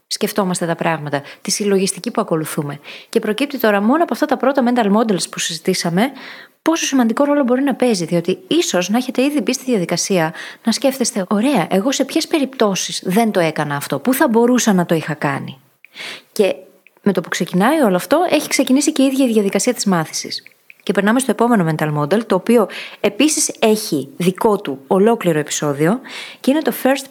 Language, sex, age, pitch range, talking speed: Greek, female, 20-39, 180-255 Hz, 190 wpm